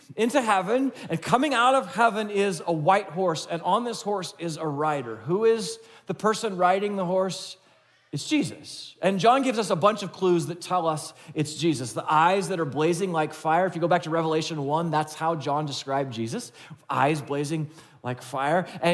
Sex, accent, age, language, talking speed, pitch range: male, American, 30-49, English, 205 wpm, 150-190 Hz